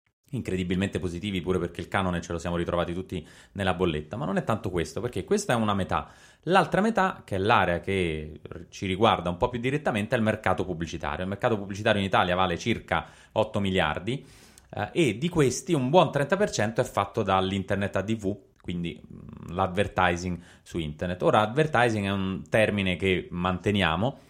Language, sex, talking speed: Italian, male, 175 wpm